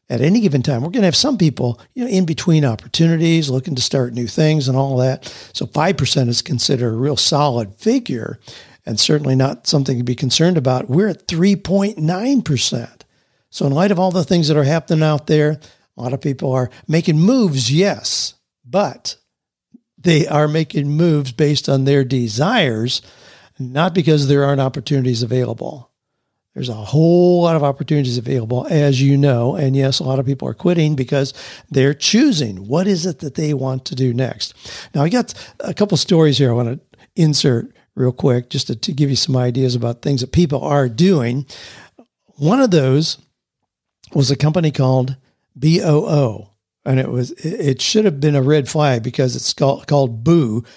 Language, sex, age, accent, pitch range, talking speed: English, male, 50-69, American, 130-165 Hz, 185 wpm